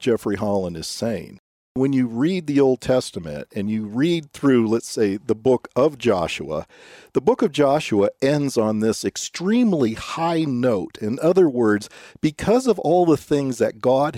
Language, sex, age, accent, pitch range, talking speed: English, male, 50-69, American, 125-185 Hz, 170 wpm